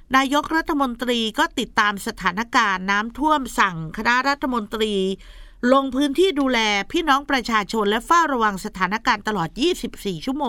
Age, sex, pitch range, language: 50-69, female, 200-265 Hz, Thai